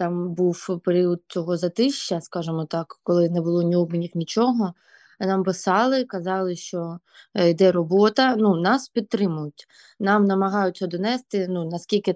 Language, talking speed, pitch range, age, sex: Ukrainian, 135 wpm, 175-200 Hz, 20-39, female